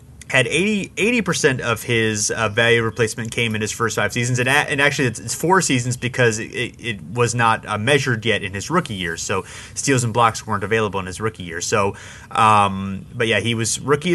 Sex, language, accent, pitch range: male, English, American, 110-140 Hz